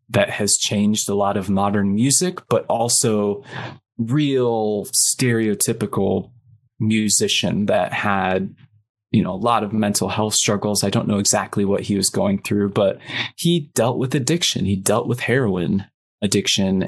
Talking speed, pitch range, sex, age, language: 150 wpm, 105-125 Hz, male, 20-39, English